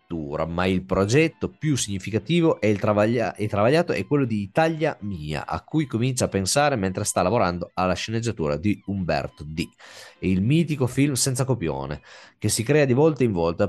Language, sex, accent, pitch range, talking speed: Italian, male, native, 90-130 Hz, 170 wpm